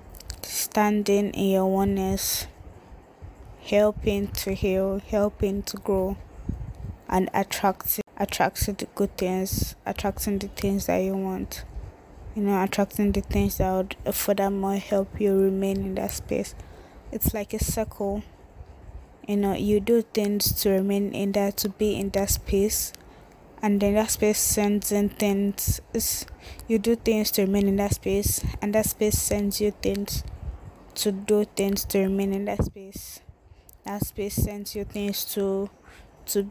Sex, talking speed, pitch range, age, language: female, 150 wpm, 185-205 Hz, 20-39, English